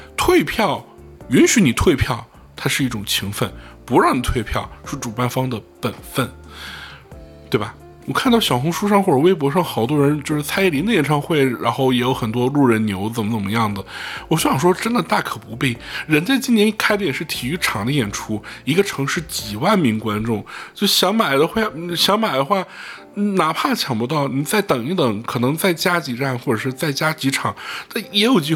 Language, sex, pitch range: Chinese, male, 115-185 Hz